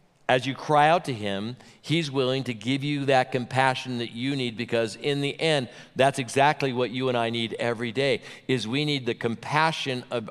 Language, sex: English, male